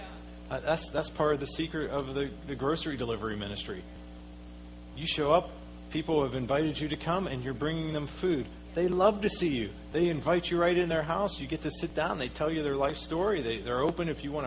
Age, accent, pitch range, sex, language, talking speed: 40-59, American, 110-160 Hz, male, English, 230 wpm